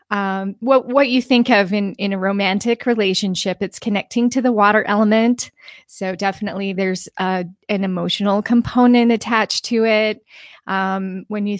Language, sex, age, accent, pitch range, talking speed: English, female, 20-39, American, 190-225 Hz, 155 wpm